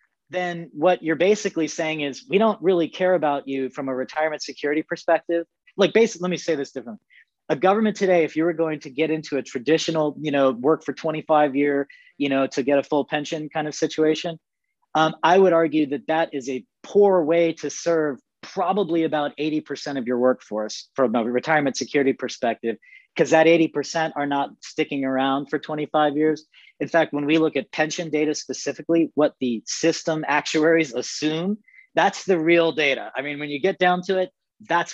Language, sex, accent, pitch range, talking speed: English, male, American, 135-165 Hz, 190 wpm